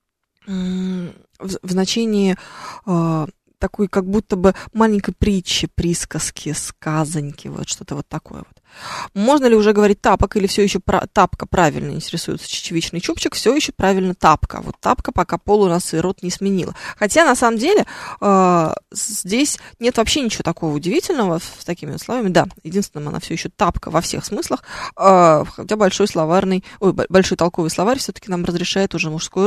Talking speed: 155 wpm